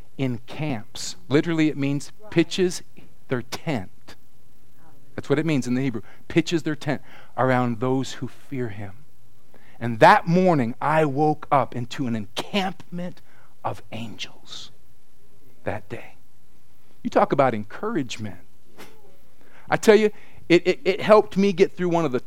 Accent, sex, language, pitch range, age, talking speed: American, male, English, 115-135 Hz, 40-59, 145 wpm